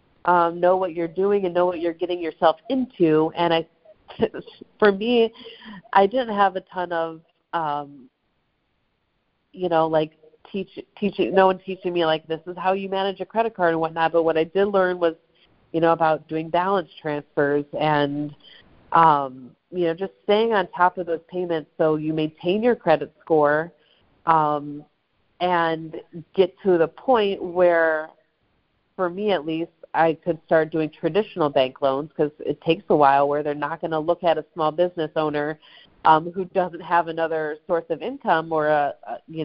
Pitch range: 155-180 Hz